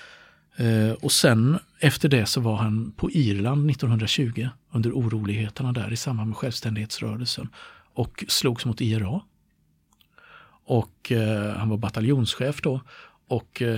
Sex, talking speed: male, 120 wpm